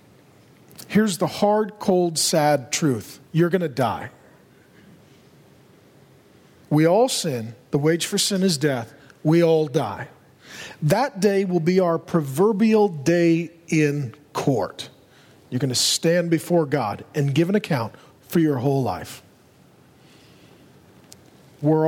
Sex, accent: male, American